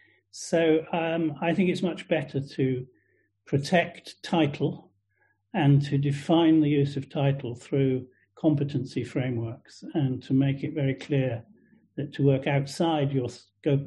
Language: English